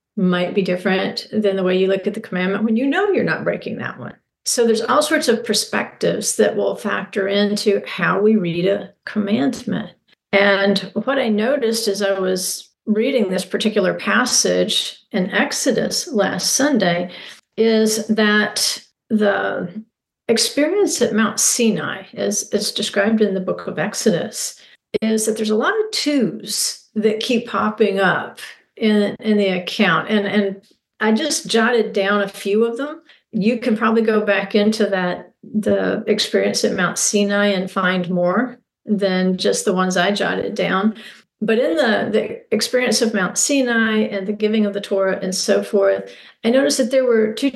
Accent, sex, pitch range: American, female, 195-230 Hz